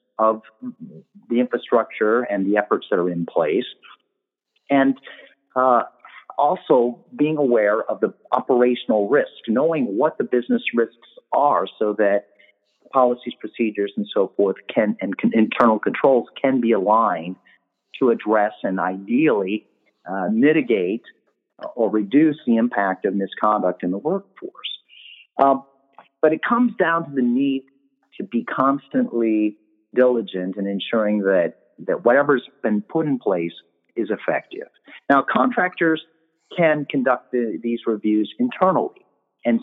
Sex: male